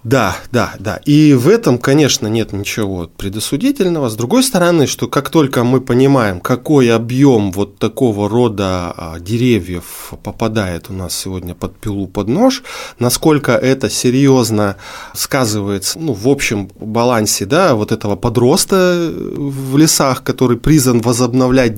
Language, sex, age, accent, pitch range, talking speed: Russian, male, 20-39, native, 105-140 Hz, 135 wpm